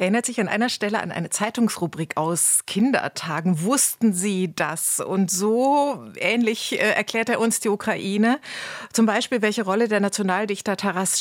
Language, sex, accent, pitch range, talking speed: German, female, German, 190-230 Hz, 150 wpm